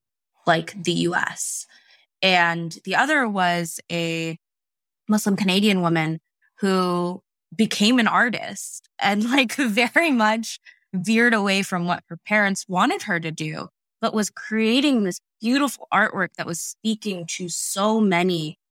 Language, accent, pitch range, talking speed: English, American, 160-205 Hz, 130 wpm